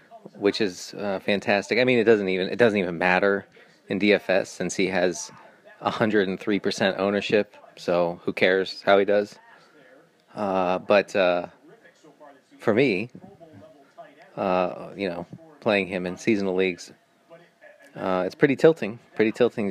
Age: 30-49